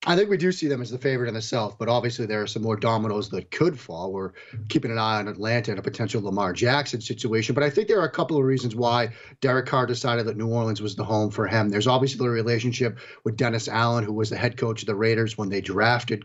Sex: male